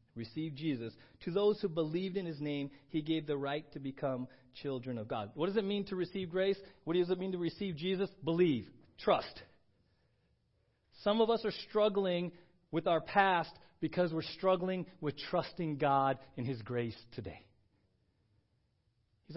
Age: 40-59